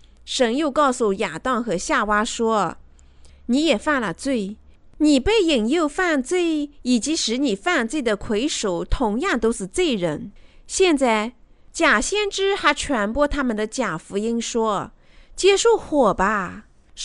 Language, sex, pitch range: Chinese, female, 225-335 Hz